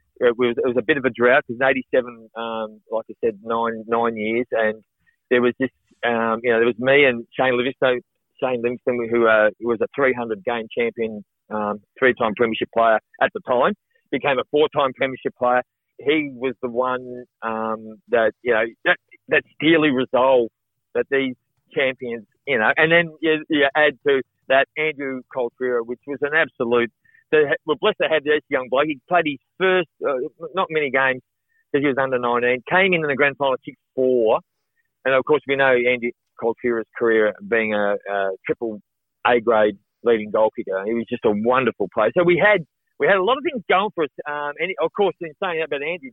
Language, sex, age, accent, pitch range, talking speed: English, male, 40-59, Australian, 115-150 Hz, 205 wpm